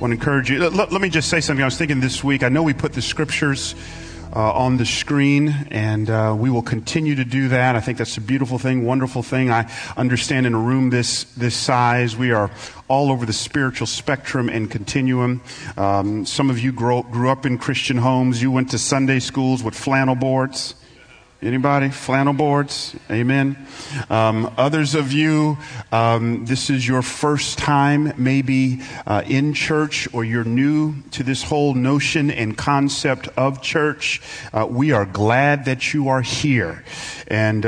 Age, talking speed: 40-59, 185 wpm